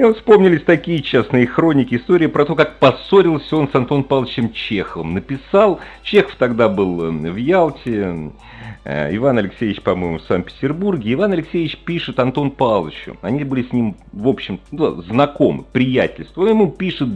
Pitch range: 95-145 Hz